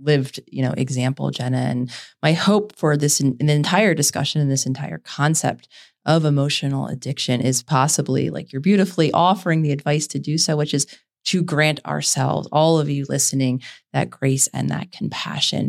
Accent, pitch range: American, 140-165 Hz